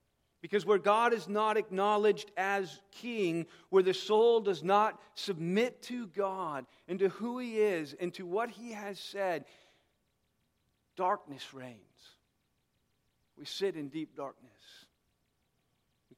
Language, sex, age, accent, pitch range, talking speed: English, male, 50-69, American, 160-205 Hz, 130 wpm